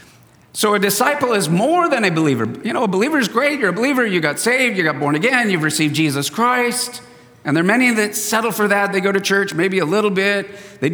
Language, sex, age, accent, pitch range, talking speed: English, male, 50-69, American, 160-205 Hz, 245 wpm